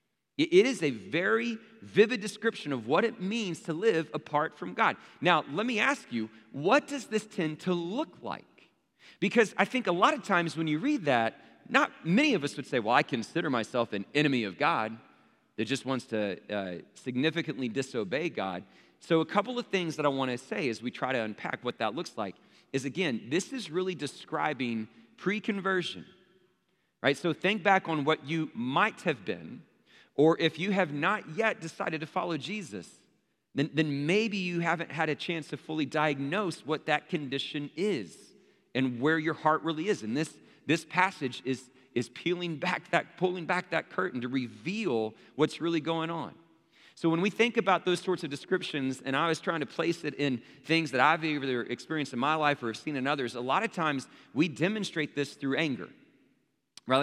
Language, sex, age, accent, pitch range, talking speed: English, male, 40-59, American, 140-190 Hz, 195 wpm